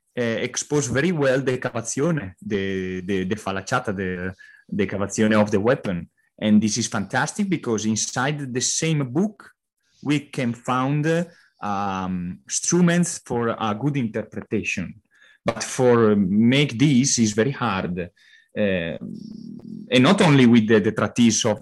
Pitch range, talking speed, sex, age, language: 105-130 Hz, 135 wpm, male, 20-39, English